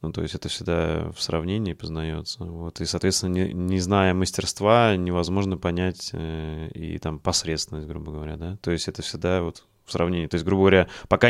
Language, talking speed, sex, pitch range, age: Russian, 190 wpm, male, 85-100 Hz, 20-39